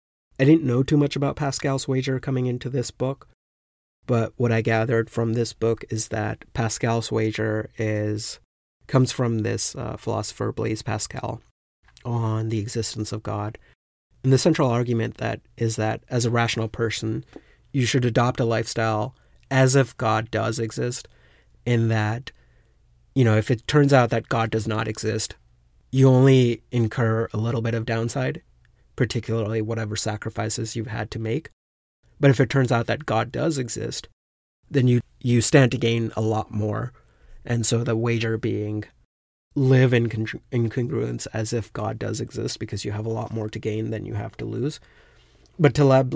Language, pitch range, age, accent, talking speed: English, 110-125 Hz, 30-49, American, 170 wpm